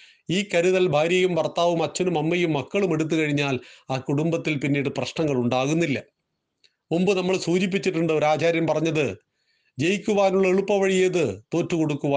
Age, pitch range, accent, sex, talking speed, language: 40-59, 145-190 Hz, native, male, 110 wpm, Malayalam